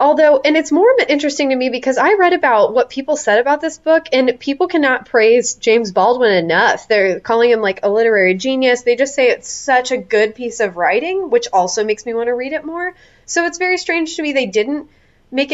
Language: English